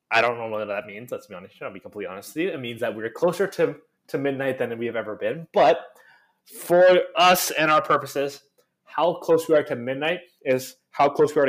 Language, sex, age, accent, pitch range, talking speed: English, male, 20-39, American, 140-185 Hz, 235 wpm